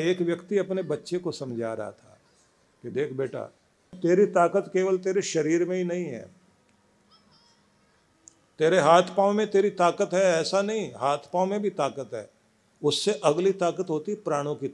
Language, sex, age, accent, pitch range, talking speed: Hindi, male, 50-69, native, 135-180 Hz, 100 wpm